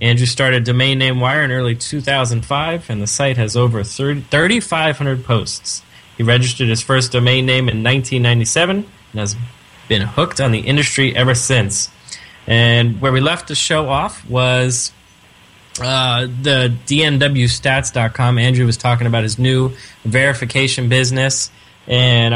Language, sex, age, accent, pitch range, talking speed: English, male, 20-39, American, 115-135 Hz, 140 wpm